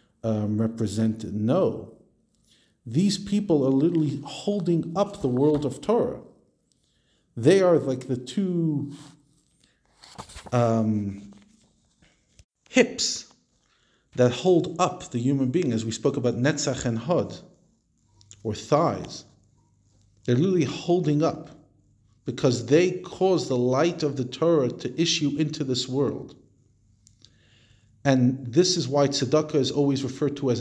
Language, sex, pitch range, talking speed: English, male, 115-145 Hz, 120 wpm